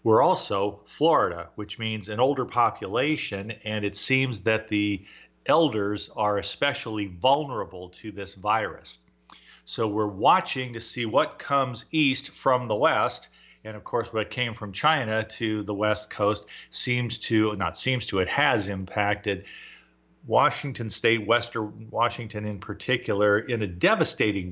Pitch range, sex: 105-135 Hz, male